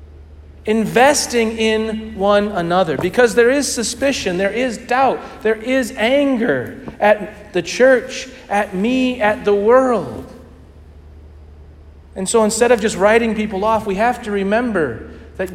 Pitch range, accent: 135-215 Hz, American